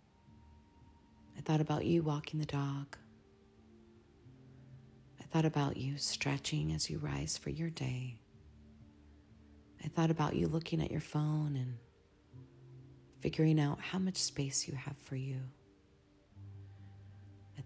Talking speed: 125 wpm